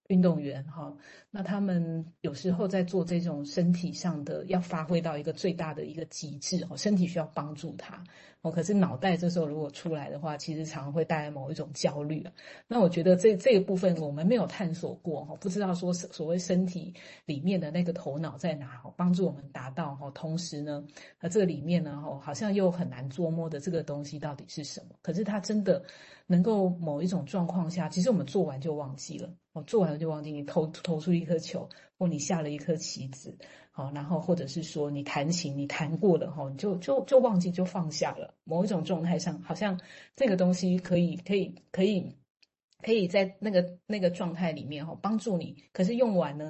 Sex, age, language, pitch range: female, 30-49, Chinese, 155-185 Hz